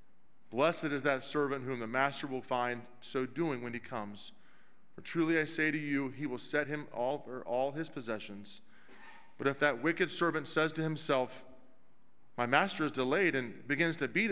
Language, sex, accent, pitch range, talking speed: English, male, American, 120-160 Hz, 185 wpm